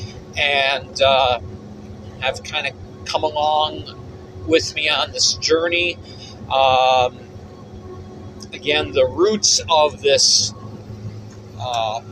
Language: English